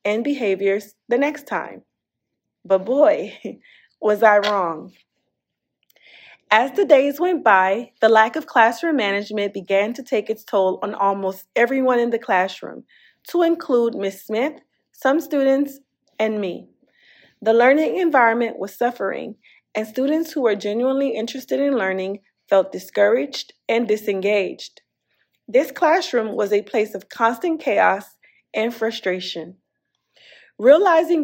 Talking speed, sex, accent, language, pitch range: 130 wpm, female, American, English, 205-285 Hz